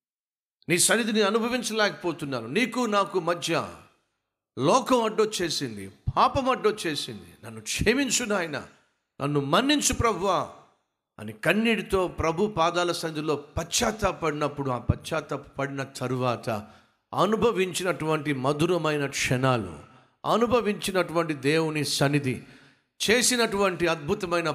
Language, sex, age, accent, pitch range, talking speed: Telugu, male, 50-69, native, 130-185 Hz, 85 wpm